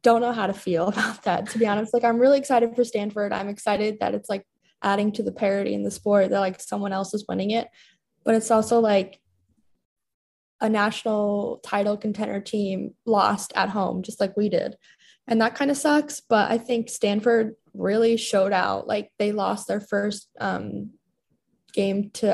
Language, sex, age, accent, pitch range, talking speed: English, female, 10-29, American, 195-230 Hz, 190 wpm